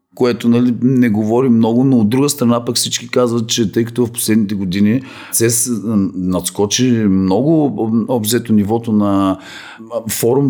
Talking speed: 145 wpm